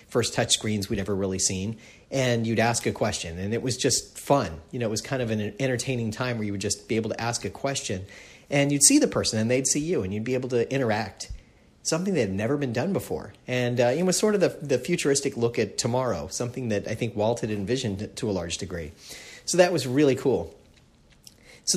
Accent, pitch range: American, 100-130 Hz